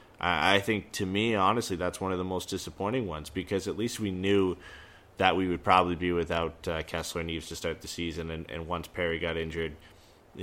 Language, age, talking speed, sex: English, 20-39, 215 wpm, male